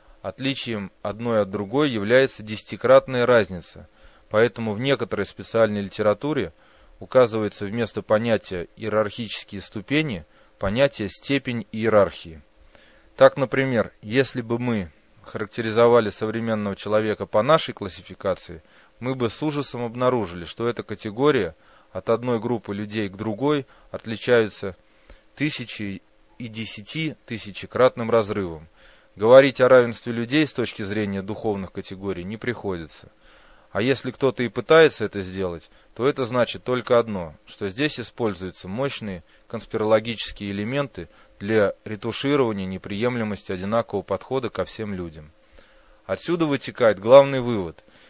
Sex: male